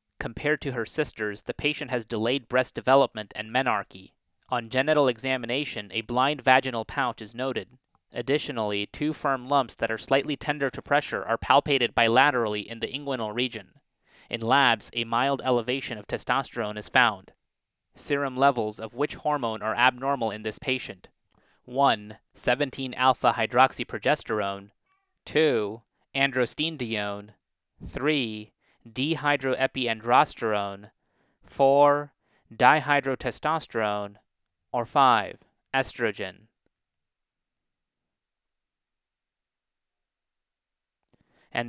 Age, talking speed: 30-49, 100 wpm